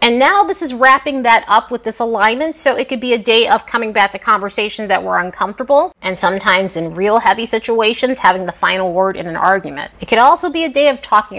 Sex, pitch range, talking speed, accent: female, 200-275 Hz, 235 wpm, American